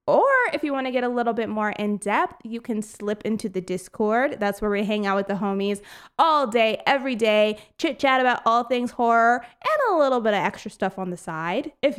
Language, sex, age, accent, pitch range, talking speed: English, female, 20-39, American, 205-265 Hz, 235 wpm